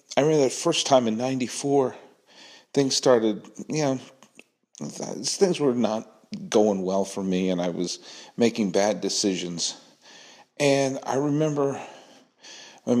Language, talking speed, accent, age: English, 135 wpm, American, 50-69